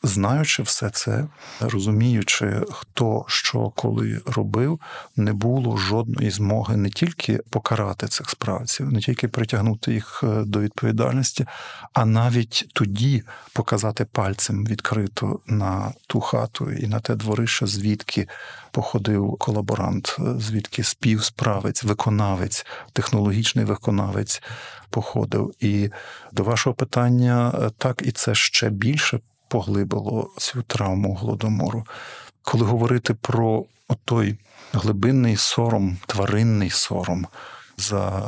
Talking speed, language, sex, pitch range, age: 105 wpm, Ukrainian, male, 105-120 Hz, 50-69